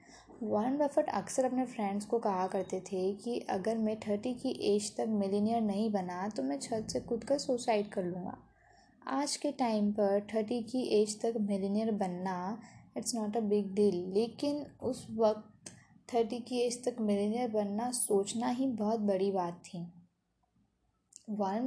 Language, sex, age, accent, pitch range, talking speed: Hindi, female, 20-39, native, 195-235 Hz, 165 wpm